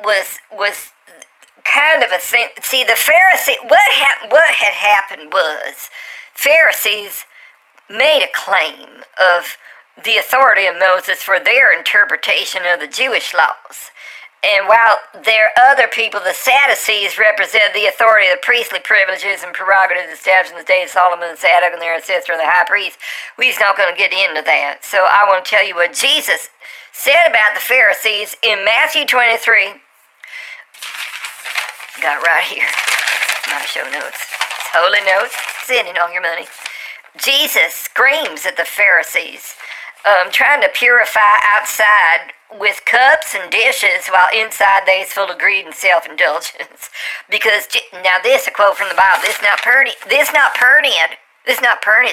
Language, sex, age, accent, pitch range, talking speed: English, male, 50-69, American, 190-270 Hz, 155 wpm